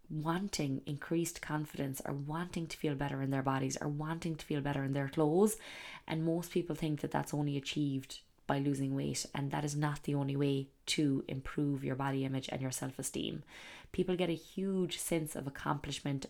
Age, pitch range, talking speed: 20-39, 140-165 Hz, 195 wpm